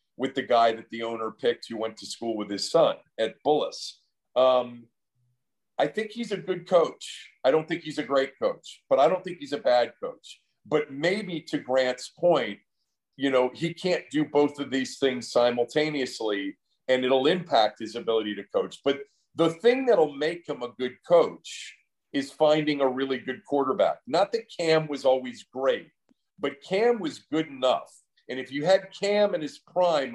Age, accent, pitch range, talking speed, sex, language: 50-69, American, 125-165 Hz, 185 wpm, male, English